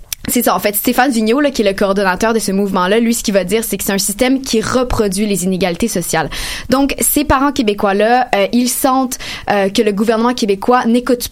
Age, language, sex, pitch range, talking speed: 20-39, French, female, 200-245 Hz, 225 wpm